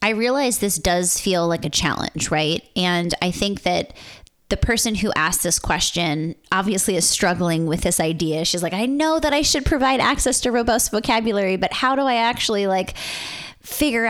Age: 20-39